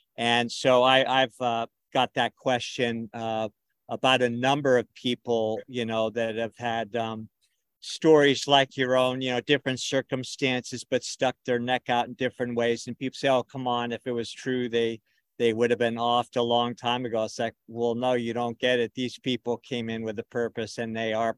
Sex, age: male, 50-69